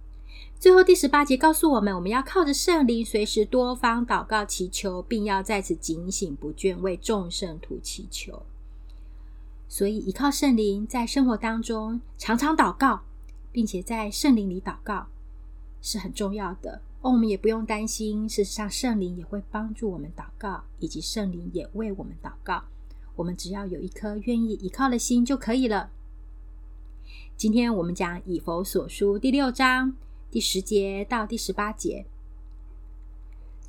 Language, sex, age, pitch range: Chinese, female, 30-49, 185-240 Hz